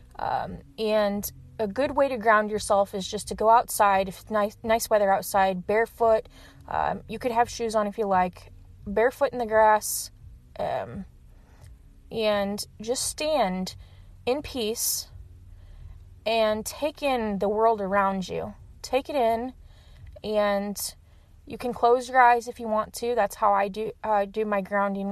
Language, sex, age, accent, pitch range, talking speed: English, female, 20-39, American, 185-225 Hz, 160 wpm